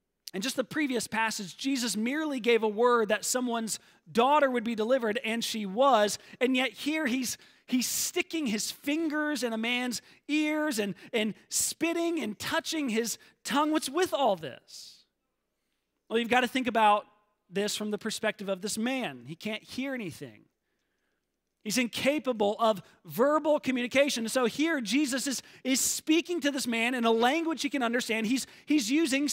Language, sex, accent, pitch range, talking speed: English, male, American, 220-275 Hz, 170 wpm